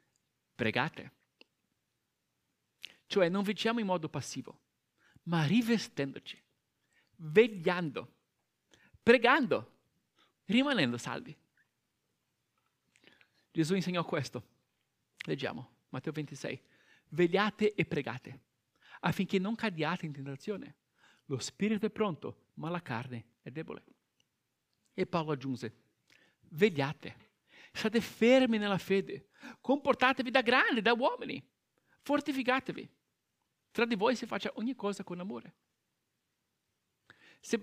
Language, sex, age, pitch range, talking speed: Italian, male, 50-69, 170-230 Hz, 95 wpm